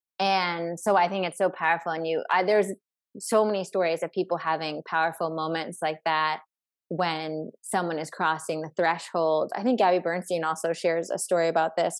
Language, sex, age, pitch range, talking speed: English, female, 20-39, 165-185 Hz, 185 wpm